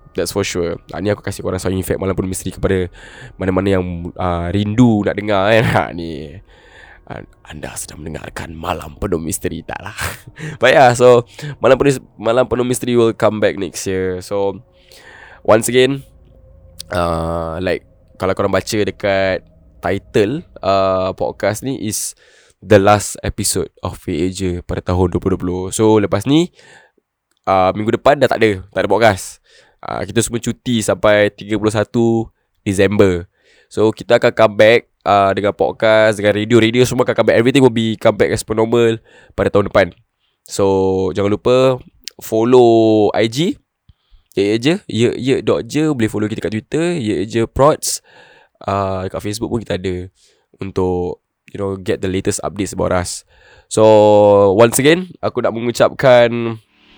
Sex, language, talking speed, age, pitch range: male, Malay, 160 wpm, 10-29, 95-115 Hz